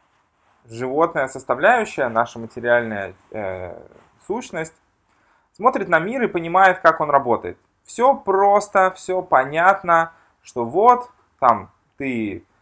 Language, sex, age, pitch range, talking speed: Russian, male, 20-39, 110-160 Hz, 105 wpm